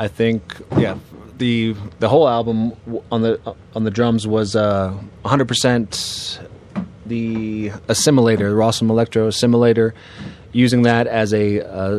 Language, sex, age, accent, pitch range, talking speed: English, male, 30-49, American, 100-115 Hz, 130 wpm